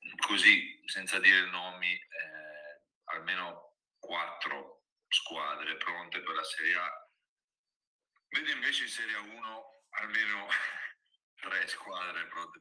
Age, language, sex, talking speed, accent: 40-59, Italian, male, 110 wpm, native